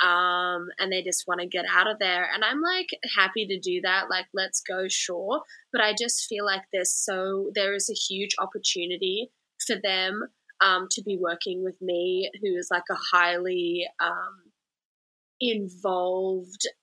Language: English